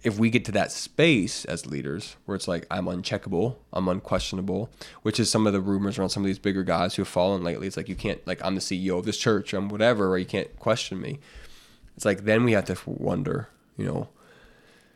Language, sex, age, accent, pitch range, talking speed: English, male, 20-39, American, 95-110 Hz, 235 wpm